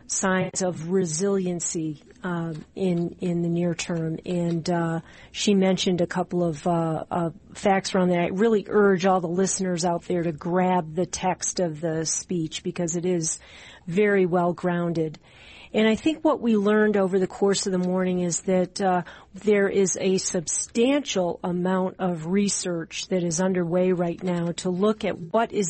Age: 40-59